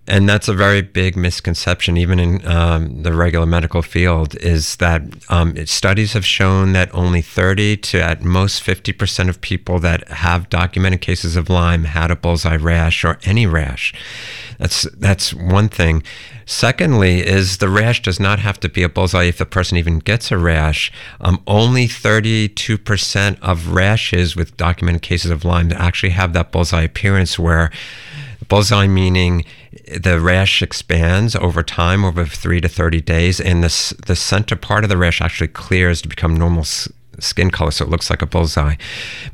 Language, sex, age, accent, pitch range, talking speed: English, male, 50-69, American, 85-100 Hz, 170 wpm